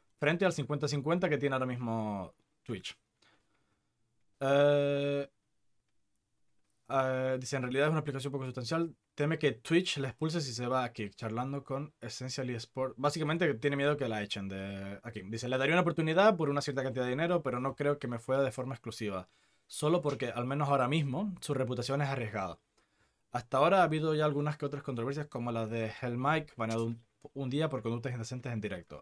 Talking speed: 190 wpm